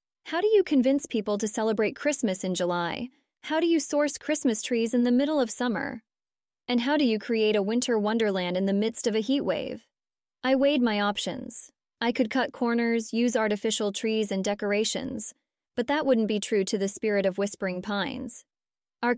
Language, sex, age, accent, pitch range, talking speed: English, female, 20-39, American, 205-260 Hz, 190 wpm